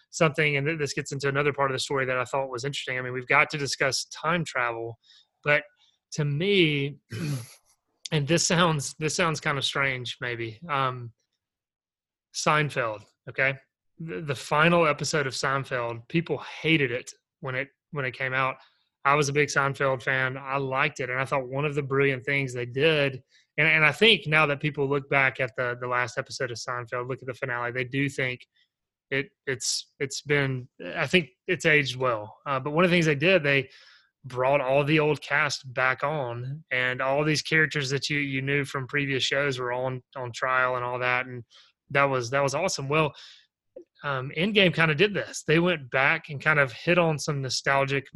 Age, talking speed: 30-49, 205 wpm